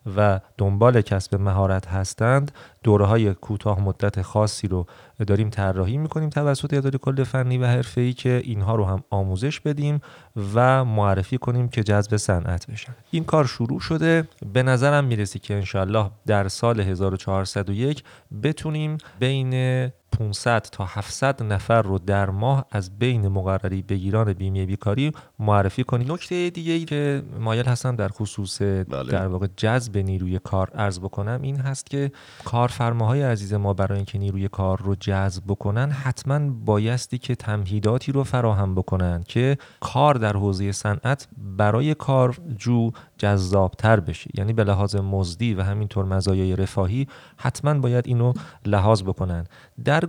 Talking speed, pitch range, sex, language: 145 wpm, 100-130 Hz, male, Persian